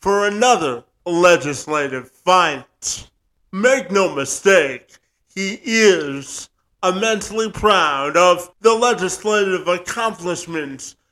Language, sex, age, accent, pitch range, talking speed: English, male, 50-69, American, 155-225 Hz, 80 wpm